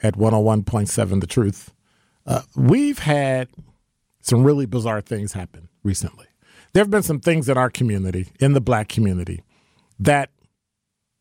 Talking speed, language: 140 wpm, English